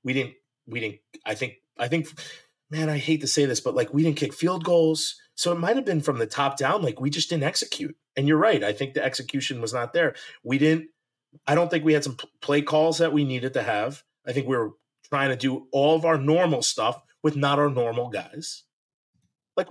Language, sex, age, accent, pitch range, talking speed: English, male, 30-49, American, 135-170 Hz, 235 wpm